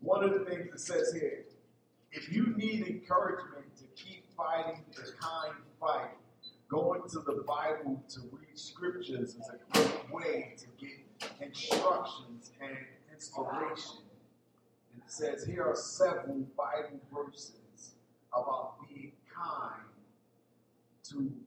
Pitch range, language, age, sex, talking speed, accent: 140-210 Hz, English, 40-59, male, 125 wpm, American